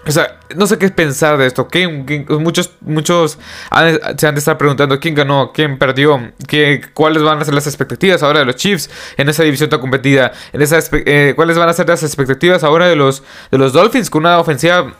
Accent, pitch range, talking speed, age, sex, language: Mexican, 135-175 Hz, 225 wpm, 20-39, male, Spanish